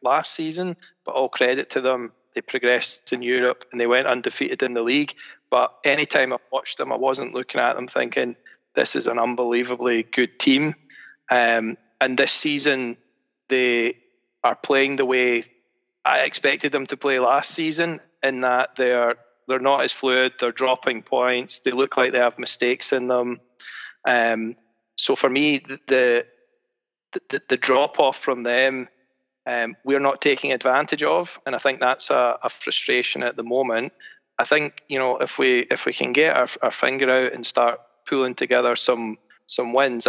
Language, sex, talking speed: English, male, 180 wpm